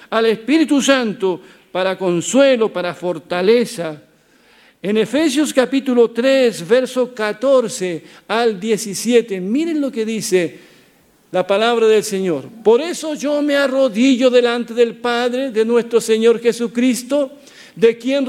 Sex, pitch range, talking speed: male, 215-270 Hz, 120 wpm